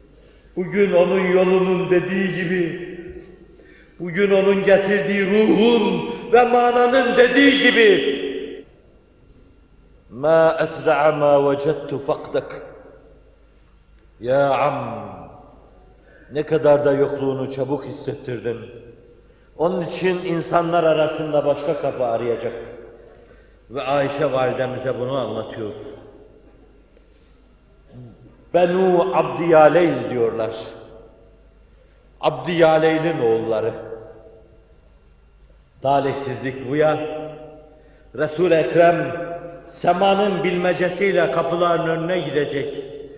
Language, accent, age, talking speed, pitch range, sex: Turkish, native, 50-69, 75 wpm, 145-215 Hz, male